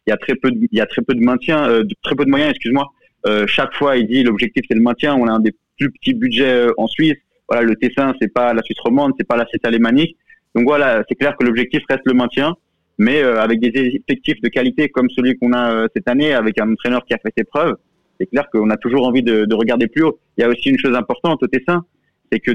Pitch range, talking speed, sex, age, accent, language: 115-135 Hz, 280 wpm, male, 20-39, French, French